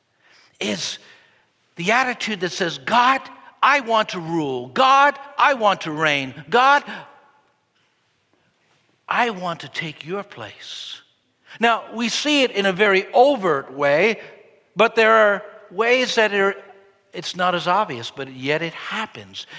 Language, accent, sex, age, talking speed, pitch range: English, American, male, 60-79, 135 wpm, 175-260 Hz